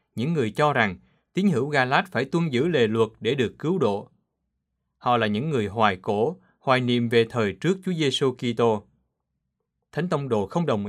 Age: 20-39